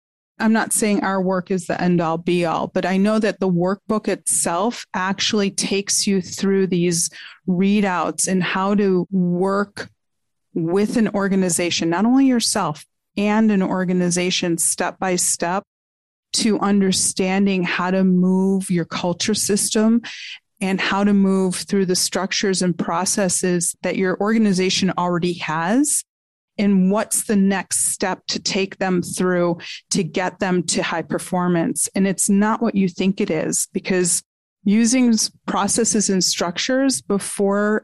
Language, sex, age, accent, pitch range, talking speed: English, female, 30-49, American, 180-210 Hz, 140 wpm